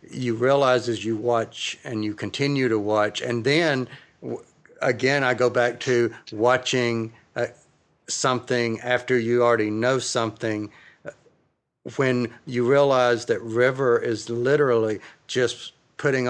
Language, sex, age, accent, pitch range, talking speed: English, male, 50-69, American, 110-125 Hz, 125 wpm